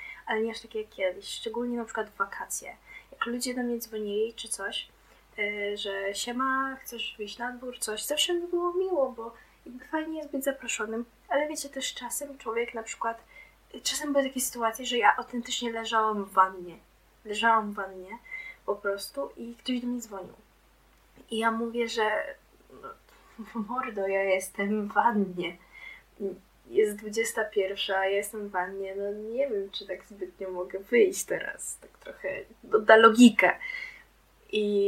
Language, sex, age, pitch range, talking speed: Polish, female, 10-29, 205-255 Hz, 160 wpm